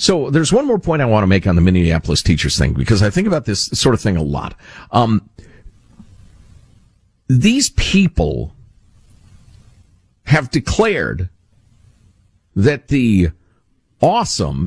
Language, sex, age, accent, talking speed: English, male, 50-69, American, 130 wpm